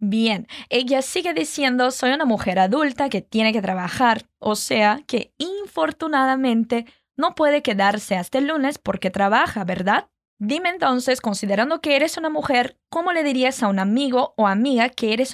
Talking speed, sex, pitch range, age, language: 165 wpm, female, 215-285 Hz, 10-29, Portuguese